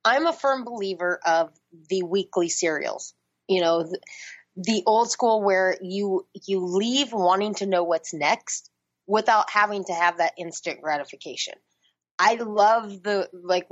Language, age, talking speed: English, 20-39, 150 wpm